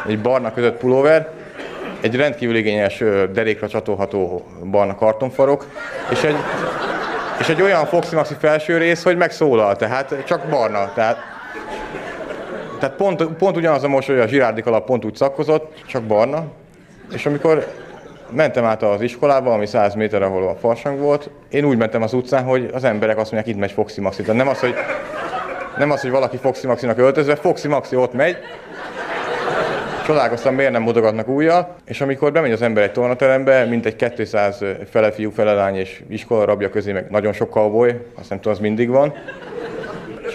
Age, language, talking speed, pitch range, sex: 30-49, Hungarian, 170 wpm, 105-145 Hz, male